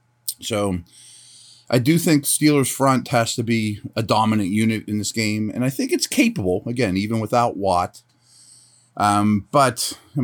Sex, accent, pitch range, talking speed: male, American, 95-120 Hz, 160 wpm